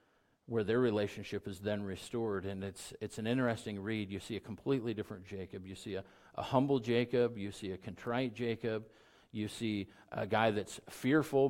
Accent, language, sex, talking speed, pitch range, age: American, English, male, 185 wpm, 105-130 Hz, 50-69